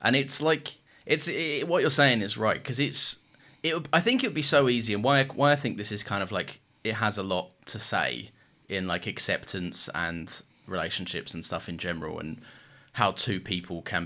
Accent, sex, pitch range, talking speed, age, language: British, male, 95-125 Hz, 215 wpm, 20-39, English